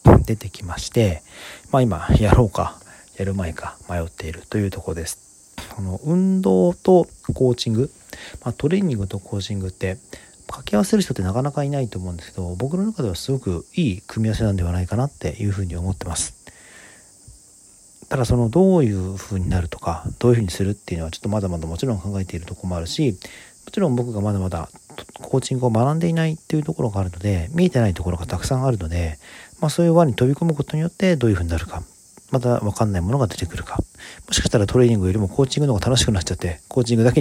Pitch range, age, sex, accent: 95-125 Hz, 40-59, male, native